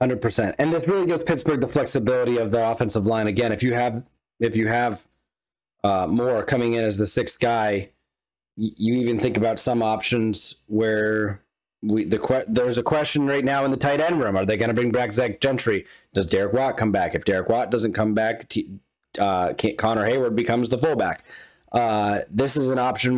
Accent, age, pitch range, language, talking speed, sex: American, 30-49, 105-135 Hz, English, 205 wpm, male